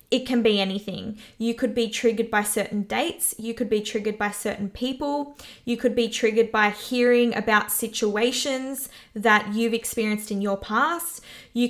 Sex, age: female, 20-39